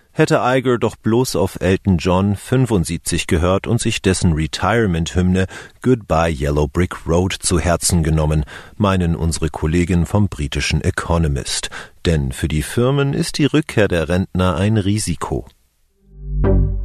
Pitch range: 80-105 Hz